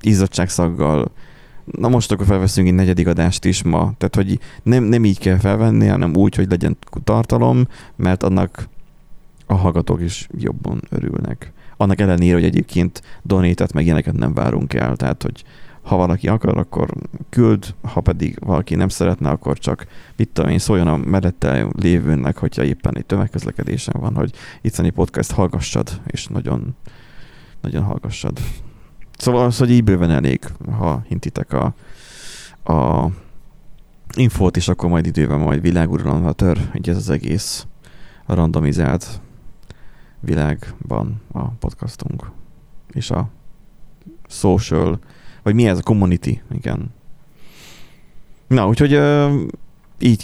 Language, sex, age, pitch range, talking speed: Hungarian, male, 30-49, 85-110 Hz, 130 wpm